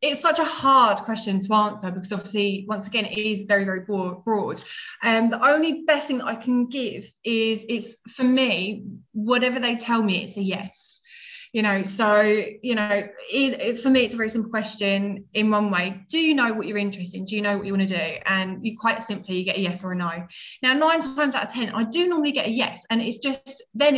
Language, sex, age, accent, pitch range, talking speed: English, female, 20-39, British, 195-235 Hz, 240 wpm